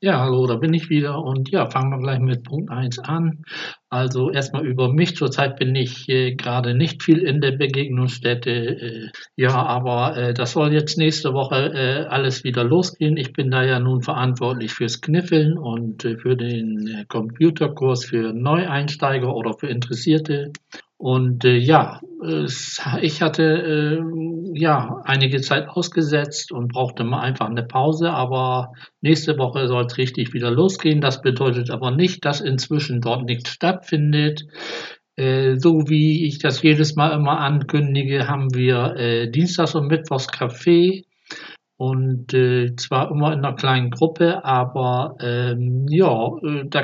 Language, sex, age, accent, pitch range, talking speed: German, male, 60-79, German, 125-155 Hz, 155 wpm